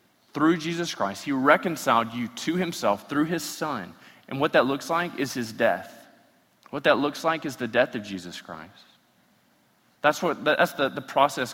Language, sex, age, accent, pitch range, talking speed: English, male, 20-39, American, 140-220 Hz, 180 wpm